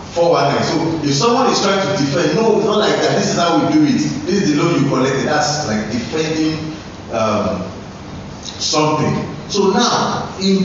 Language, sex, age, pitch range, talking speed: English, male, 40-59, 110-175 Hz, 190 wpm